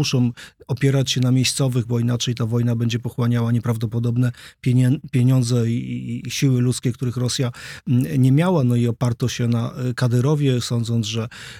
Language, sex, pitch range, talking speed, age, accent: Polish, male, 120-145 Hz, 145 wpm, 40-59, native